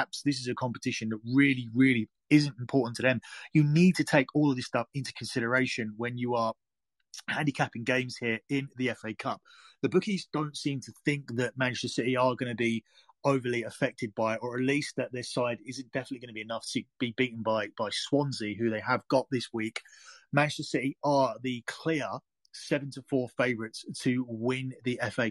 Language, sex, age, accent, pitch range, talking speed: English, male, 30-49, British, 115-140 Hz, 195 wpm